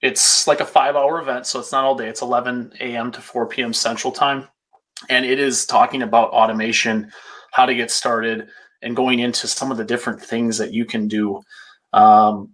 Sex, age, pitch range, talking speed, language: male, 30-49, 110-135 Hz, 195 wpm, English